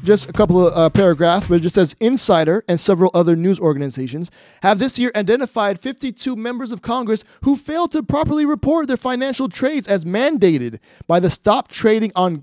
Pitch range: 180-245 Hz